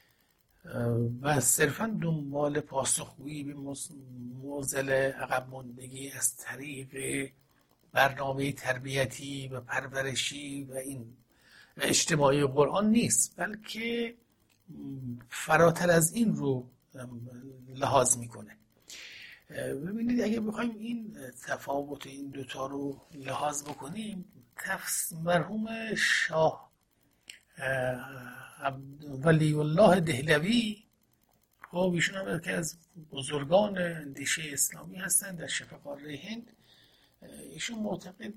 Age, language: 60-79, Persian